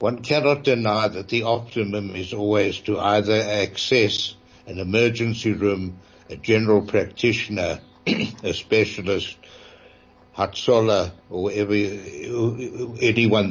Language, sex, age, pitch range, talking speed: English, male, 60-79, 95-110 Hz, 100 wpm